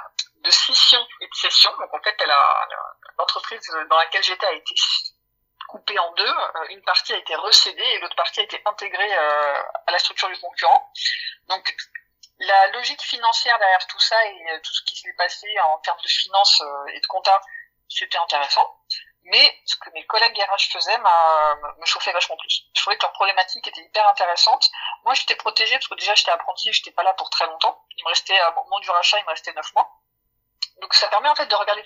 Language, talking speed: French, 210 wpm